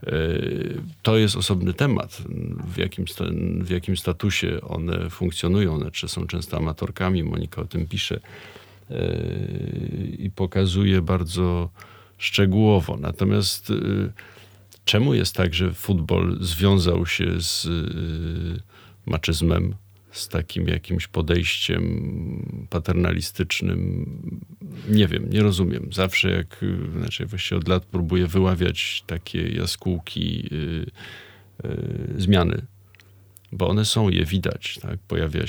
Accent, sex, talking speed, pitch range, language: native, male, 95 wpm, 85-105 Hz, Polish